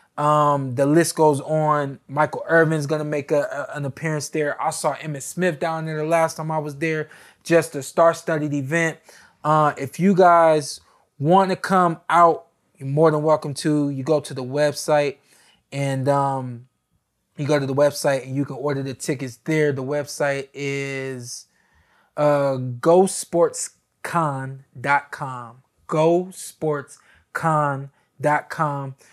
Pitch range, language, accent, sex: 140-160 Hz, English, American, male